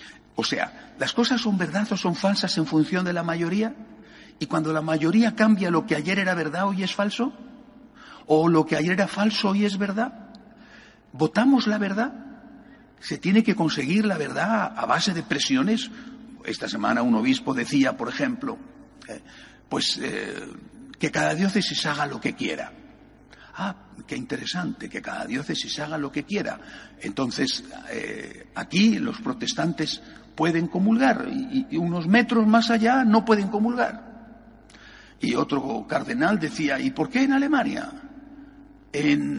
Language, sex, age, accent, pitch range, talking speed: Spanish, male, 60-79, Spanish, 180-255 Hz, 155 wpm